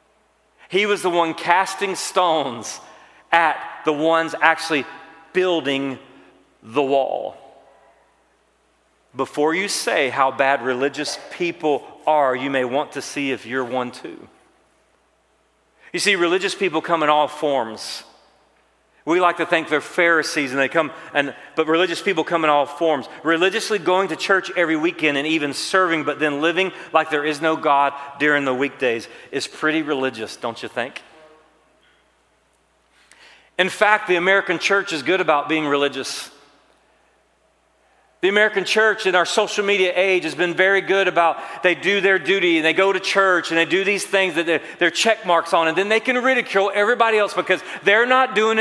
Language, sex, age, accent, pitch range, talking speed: English, male, 40-59, American, 140-185 Hz, 165 wpm